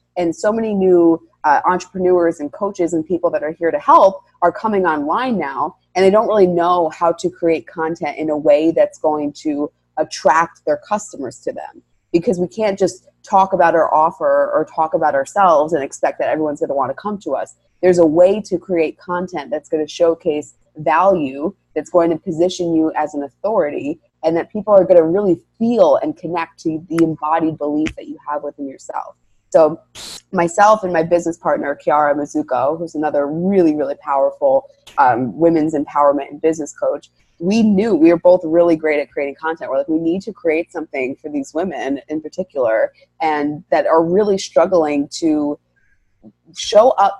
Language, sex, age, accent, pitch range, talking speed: English, female, 30-49, American, 150-185 Hz, 190 wpm